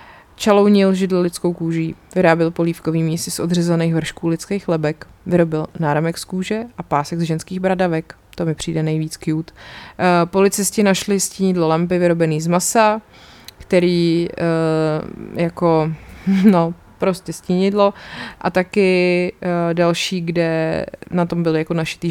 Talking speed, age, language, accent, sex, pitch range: 130 wpm, 20-39, Czech, native, female, 160-190 Hz